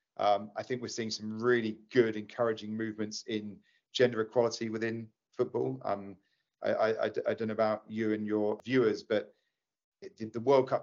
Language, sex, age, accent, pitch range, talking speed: English, male, 40-59, British, 110-130 Hz, 175 wpm